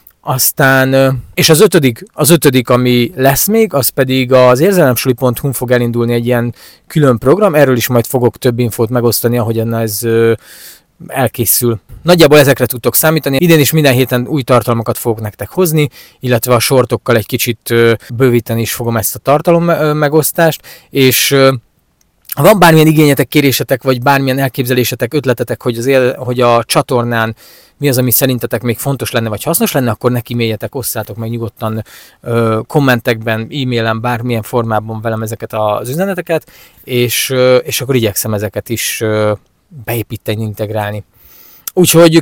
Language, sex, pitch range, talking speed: Hungarian, male, 115-140 Hz, 145 wpm